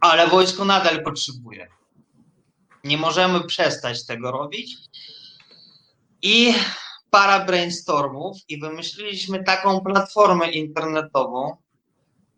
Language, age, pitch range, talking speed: Polish, 20-39, 135-185 Hz, 80 wpm